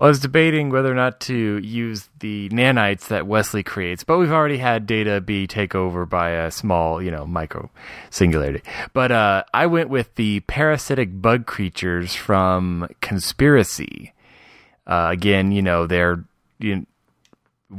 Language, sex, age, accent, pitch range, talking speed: English, male, 20-39, American, 95-115 Hz, 155 wpm